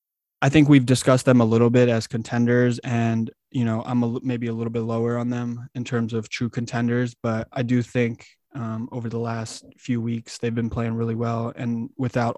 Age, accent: 20-39, American